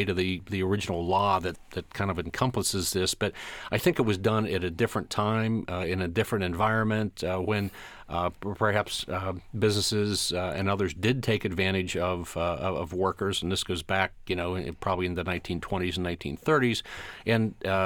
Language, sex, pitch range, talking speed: English, male, 95-115 Hz, 190 wpm